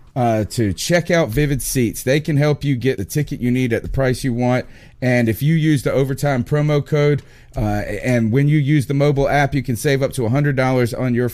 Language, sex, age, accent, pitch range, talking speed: English, male, 40-59, American, 120-150 Hz, 235 wpm